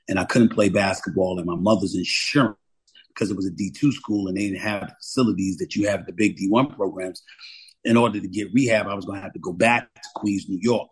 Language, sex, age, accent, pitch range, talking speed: English, male, 40-59, American, 95-110 Hz, 260 wpm